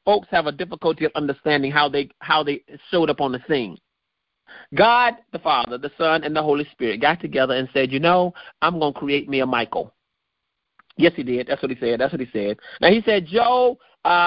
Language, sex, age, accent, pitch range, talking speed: English, male, 30-49, American, 135-175 Hz, 215 wpm